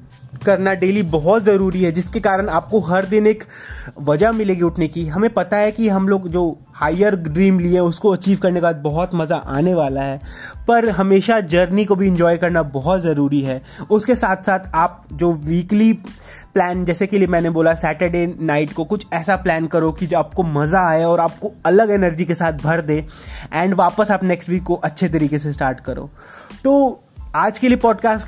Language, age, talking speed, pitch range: Hindi, 20-39, 190 wpm, 165-210 Hz